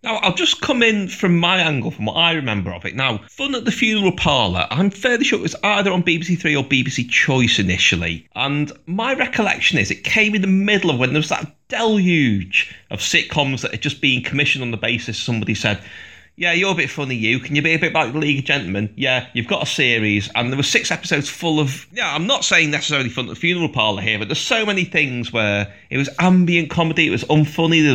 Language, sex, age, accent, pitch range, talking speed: English, male, 30-49, British, 120-175 Hz, 245 wpm